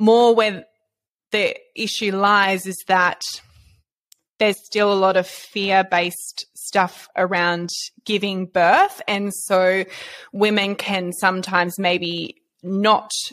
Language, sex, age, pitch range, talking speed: English, female, 20-39, 180-210 Hz, 110 wpm